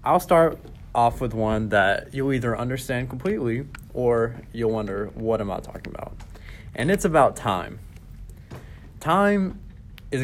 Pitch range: 105-130 Hz